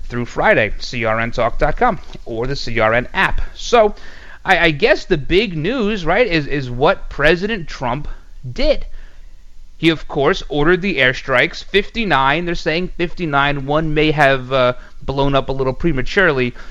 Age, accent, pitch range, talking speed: 30-49, American, 120-185 Hz, 145 wpm